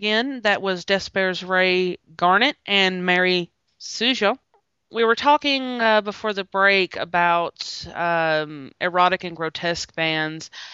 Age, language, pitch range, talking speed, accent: 20-39, English, 160-205 Hz, 125 wpm, American